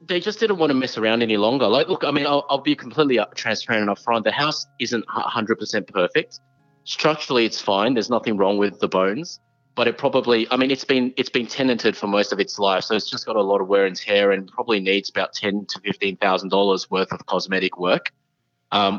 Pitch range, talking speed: 100-135 Hz, 235 wpm